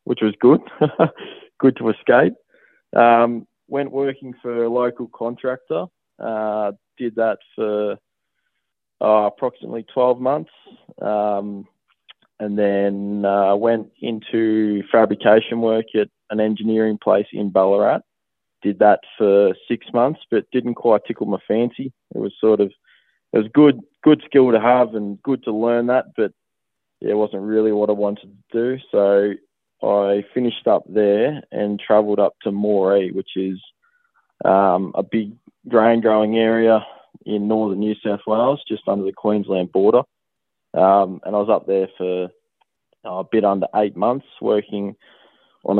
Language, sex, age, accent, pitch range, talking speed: English, male, 20-39, Australian, 105-120 Hz, 145 wpm